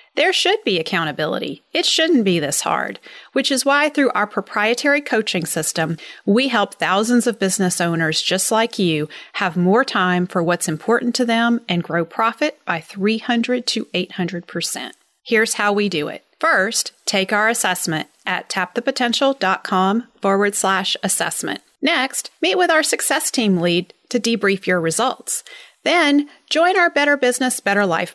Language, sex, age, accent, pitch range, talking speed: English, female, 40-59, American, 180-260 Hz, 155 wpm